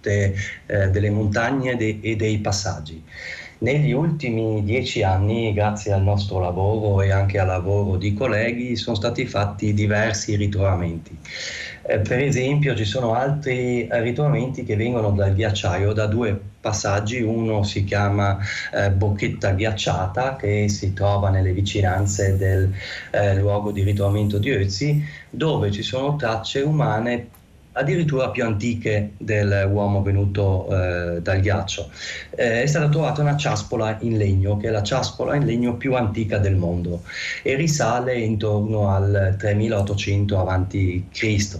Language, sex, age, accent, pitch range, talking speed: Italian, male, 20-39, native, 100-115 Hz, 130 wpm